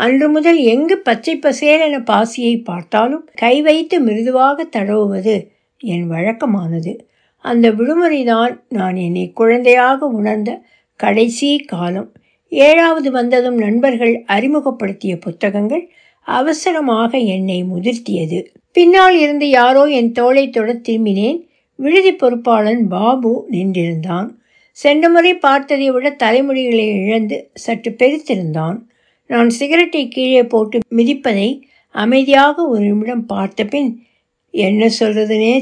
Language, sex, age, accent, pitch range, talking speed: Tamil, female, 60-79, native, 215-285 Hz, 95 wpm